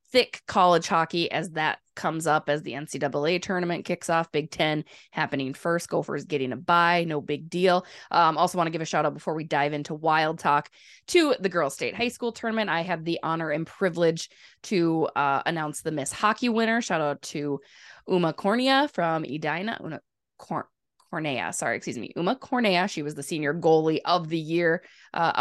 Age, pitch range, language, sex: 20-39, 145-175 Hz, English, female